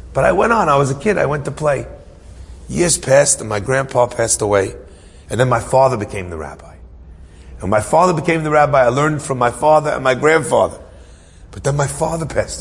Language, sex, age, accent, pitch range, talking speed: English, male, 40-59, American, 90-140 Hz, 215 wpm